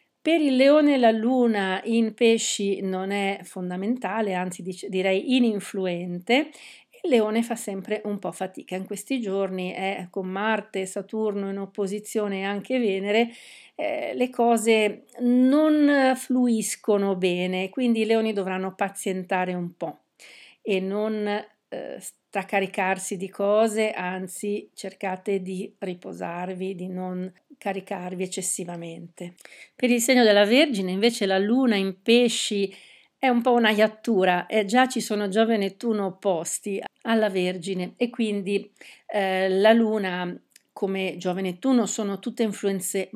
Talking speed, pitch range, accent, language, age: 135 wpm, 190-230 Hz, native, Italian, 50-69